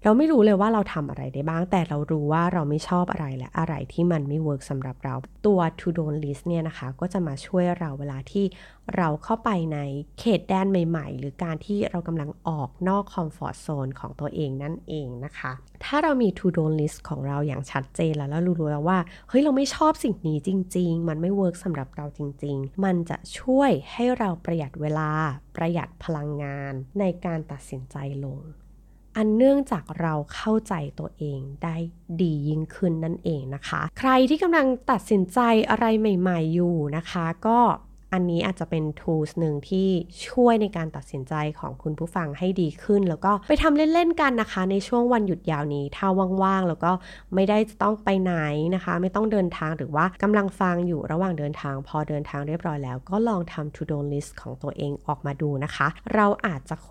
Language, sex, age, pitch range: Thai, female, 20-39, 150-195 Hz